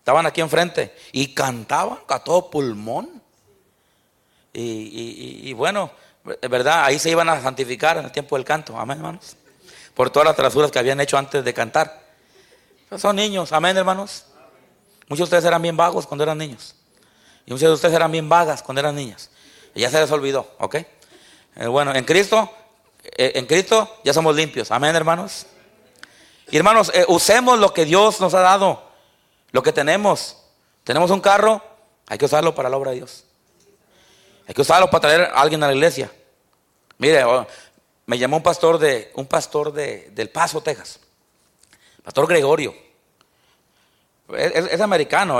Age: 40-59